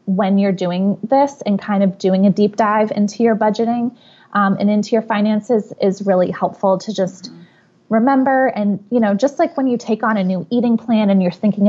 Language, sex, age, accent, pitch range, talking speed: English, female, 20-39, American, 200-235 Hz, 210 wpm